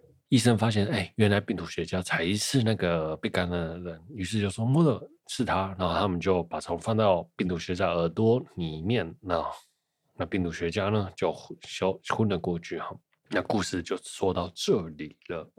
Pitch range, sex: 90-120 Hz, male